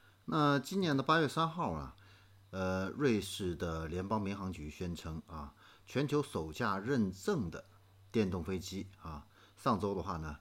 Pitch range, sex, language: 85-110 Hz, male, Chinese